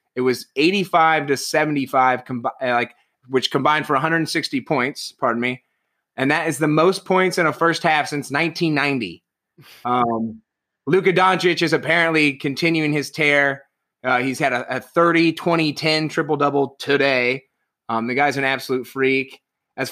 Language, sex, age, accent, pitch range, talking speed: English, male, 30-49, American, 130-165 Hz, 150 wpm